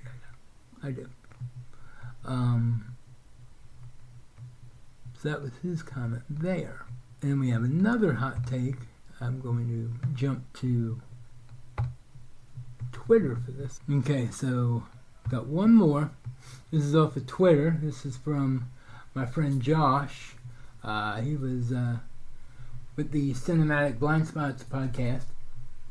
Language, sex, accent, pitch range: English, male, American, 120-150 Hz